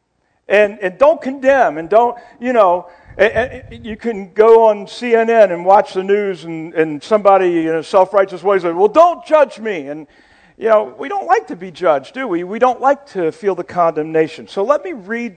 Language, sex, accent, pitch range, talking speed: English, male, American, 165-255 Hz, 205 wpm